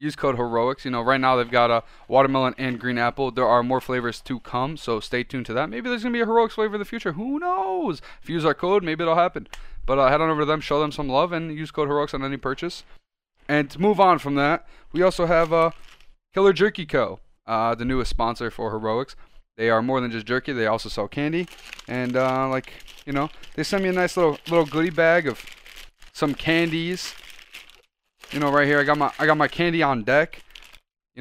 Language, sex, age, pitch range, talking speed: English, male, 20-39, 130-195 Hz, 240 wpm